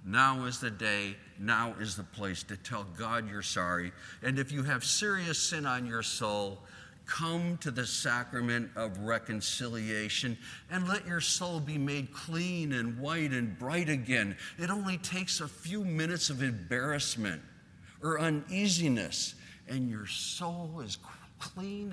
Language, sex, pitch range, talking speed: English, male, 100-155 Hz, 150 wpm